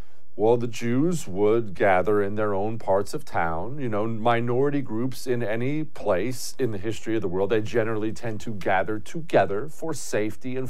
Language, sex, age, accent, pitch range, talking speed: English, male, 40-59, American, 95-130 Hz, 185 wpm